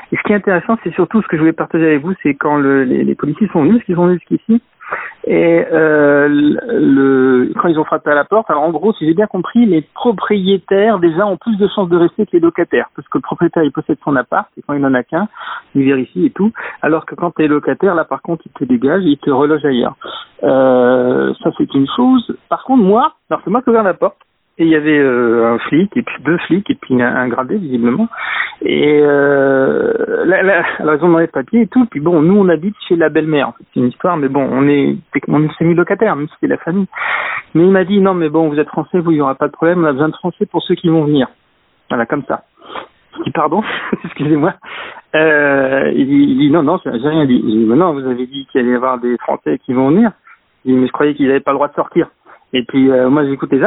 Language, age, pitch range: French, 50-69, 140-200 Hz